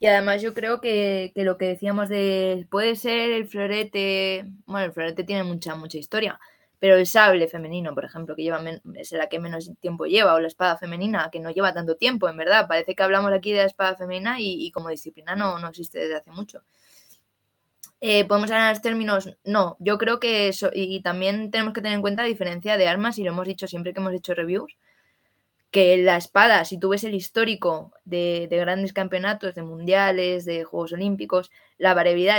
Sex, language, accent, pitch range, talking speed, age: female, Spanish, Spanish, 180-210 Hz, 210 wpm, 20-39